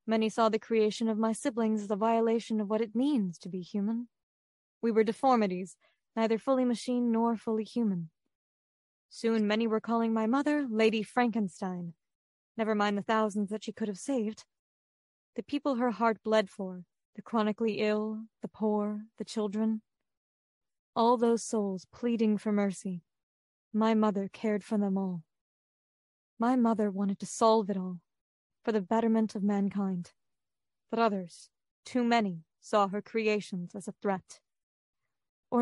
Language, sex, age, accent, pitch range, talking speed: English, female, 20-39, American, 200-230 Hz, 155 wpm